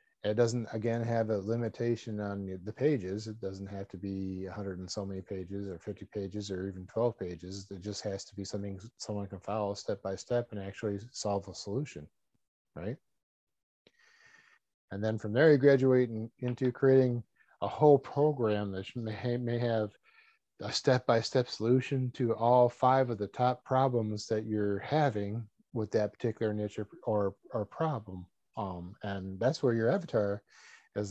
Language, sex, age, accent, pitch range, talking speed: English, male, 40-59, American, 95-120 Hz, 175 wpm